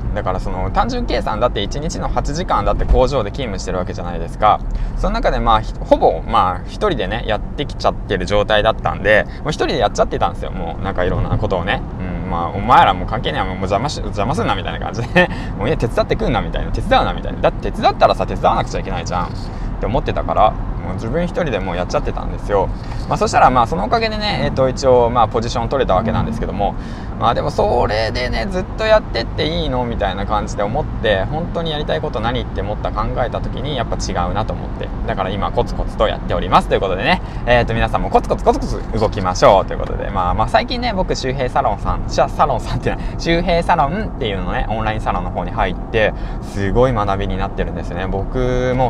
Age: 20-39